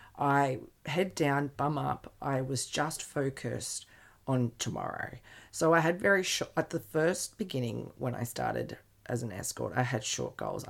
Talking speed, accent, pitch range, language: 170 wpm, Australian, 120-145 Hz, English